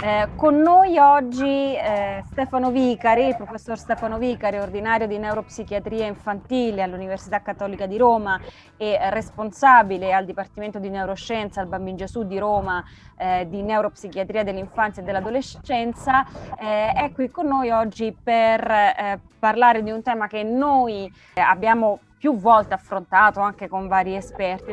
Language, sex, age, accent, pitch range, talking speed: Italian, female, 20-39, native, 195-235 Hz, 140 wpm